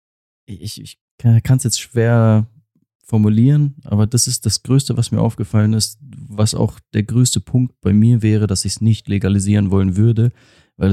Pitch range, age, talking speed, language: 95-115 Hz, 30-49, 170 wpm, German